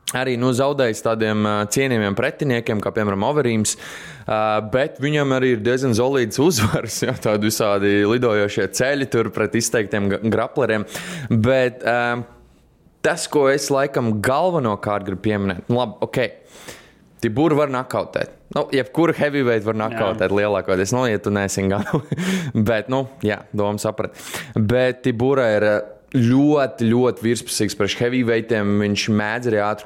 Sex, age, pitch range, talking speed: male, 20-39, 105-130 Hz, 145 wpm